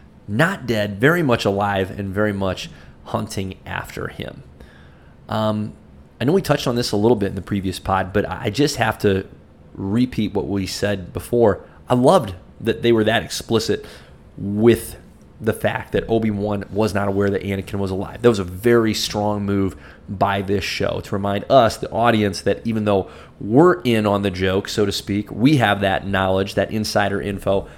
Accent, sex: American, male